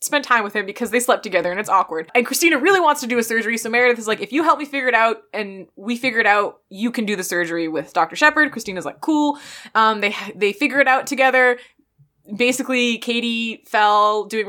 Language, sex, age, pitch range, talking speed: English, female, 20-39, 210-275 Hz, 235 wpm